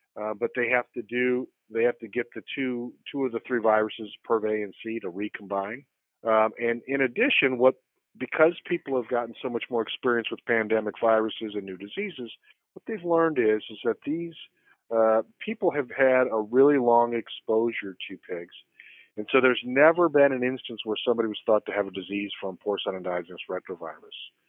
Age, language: 50-69, English